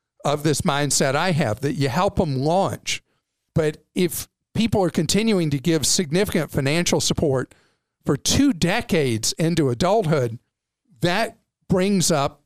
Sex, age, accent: male, 50-69, American